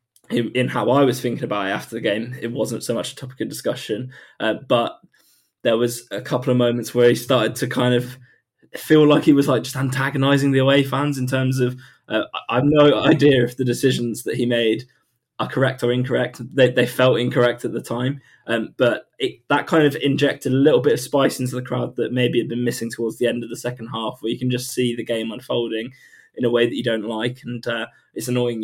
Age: 20-39